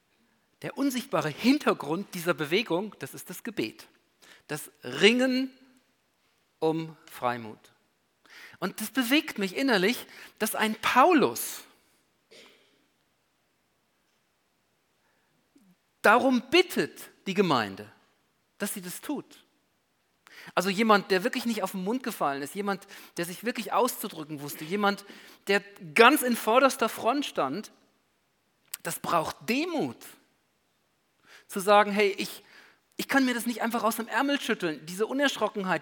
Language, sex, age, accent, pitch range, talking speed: German, male, 50-69, German, 160-235 Hz, 120 wpm